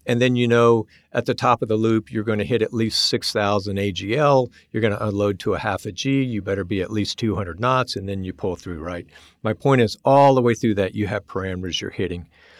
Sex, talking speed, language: male, 255 wpm, English